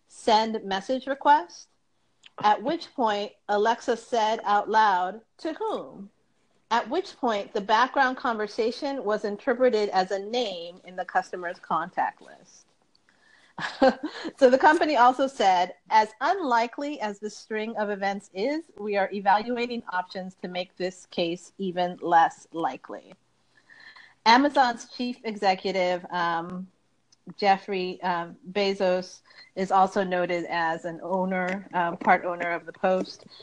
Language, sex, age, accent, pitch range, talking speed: English, female, 40-59, American, 185-235 Hz, 125 wpm